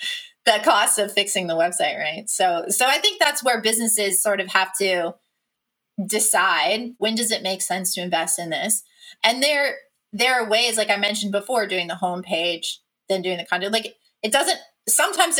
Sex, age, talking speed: female, 20-39, 190 wpm